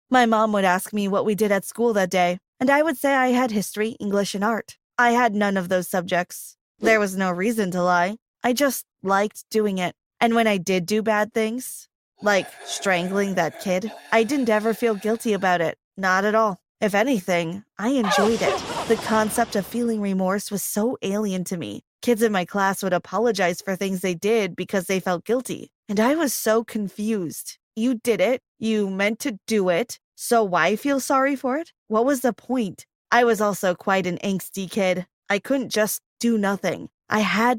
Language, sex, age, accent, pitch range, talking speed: English, female, 20-39, American, 190-230 Hz, 200 wpm